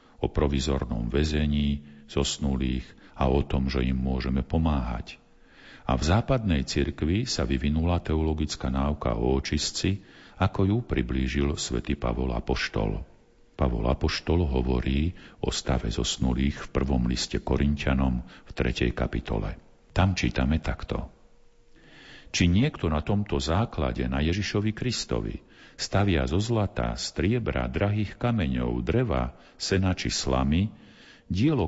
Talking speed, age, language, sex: 115 wpm, 50-69, Slovak, male